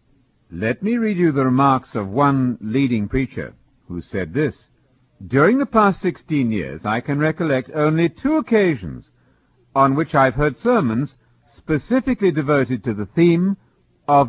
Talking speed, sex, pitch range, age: 145 wpm, male, 115-175 Hz, 50-69